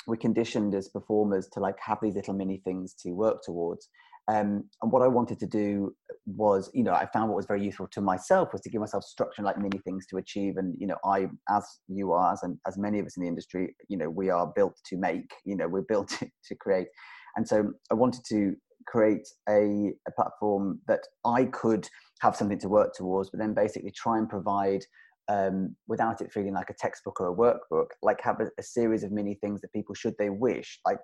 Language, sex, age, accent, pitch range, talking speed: English, male, 30-49, British, 95-115 Hz, 230 wpm